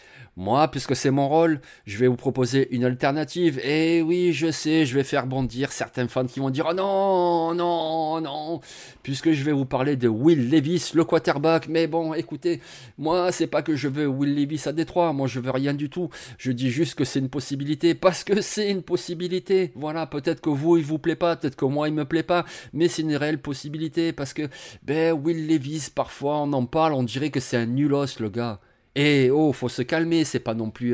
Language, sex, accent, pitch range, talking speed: French, male, French, 135-170 Hz, 225 wpm